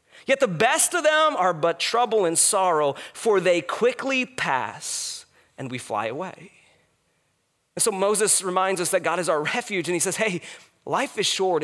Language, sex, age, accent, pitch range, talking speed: English, male, 30-49, American, 165-220 Hz, 180 wpm